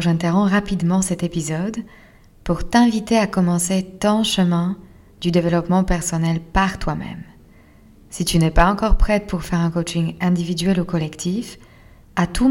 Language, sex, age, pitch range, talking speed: French, female, 20-39, 165-195 Hz, 145 wpm